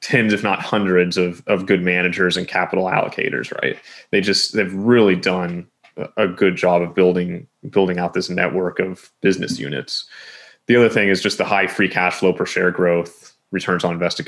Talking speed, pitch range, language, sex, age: 190 wpm, 90-110 Hz, English, male, 20-39